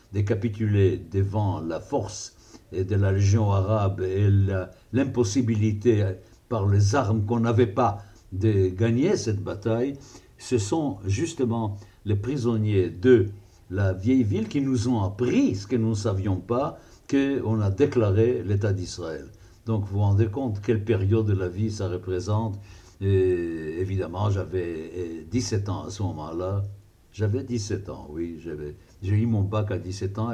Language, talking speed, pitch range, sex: French, 155 wpm, 95-115 Hz, male